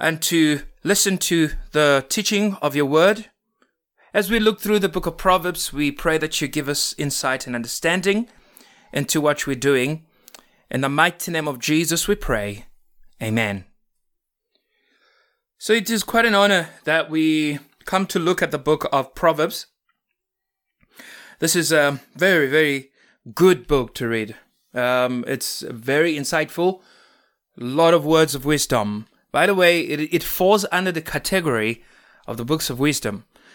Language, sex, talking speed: English, male, 155 wpm